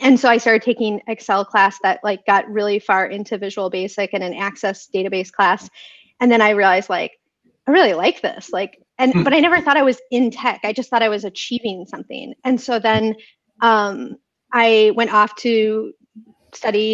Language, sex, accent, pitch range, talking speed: English, female, American, 200-230 Hz, 195 wpm